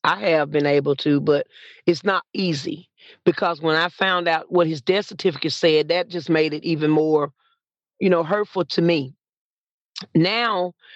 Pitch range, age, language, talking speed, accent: 170-215 Hz, 40-59, English, 170 wpm, American